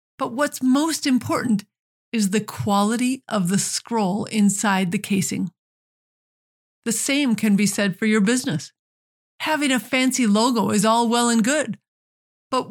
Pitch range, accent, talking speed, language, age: 195-235 Hz, American, 145 wpm, English, 50-69